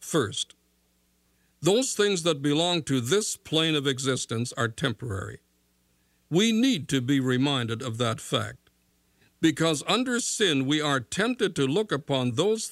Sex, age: male, 60-79